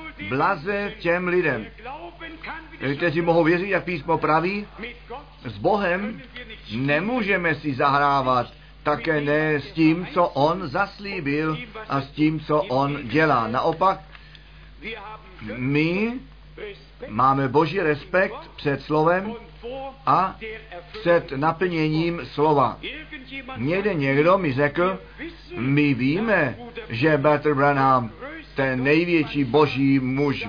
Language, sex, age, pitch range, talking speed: Czech, male, 50-69, 140-180 Hz, 100 wpm